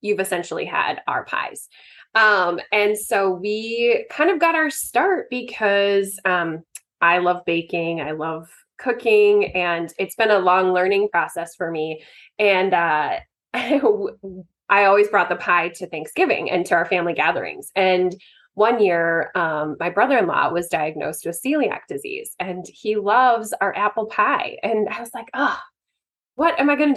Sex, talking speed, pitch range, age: female, 160 wpm, 180-230 Hz, 20-39